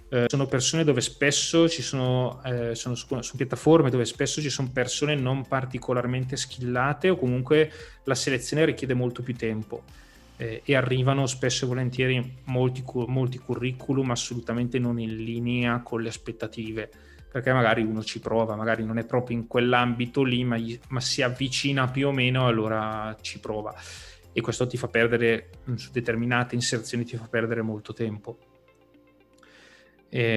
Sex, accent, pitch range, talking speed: male, native, 115-125 Hz, 155 wpm